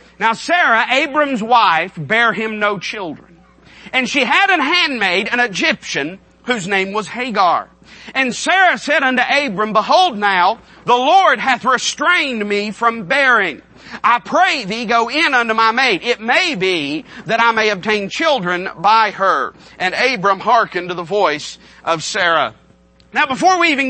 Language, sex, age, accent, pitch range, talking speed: English, male, 40-59, American, 215-275 Hz, 160 wpm